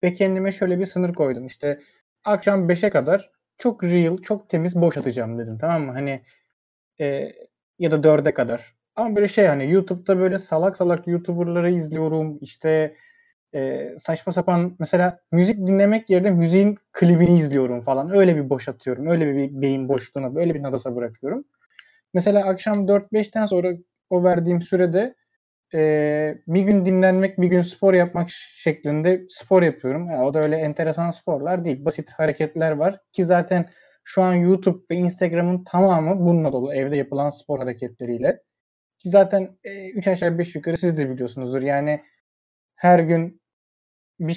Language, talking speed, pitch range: Turkish, 155 wpm, 145-190 Hz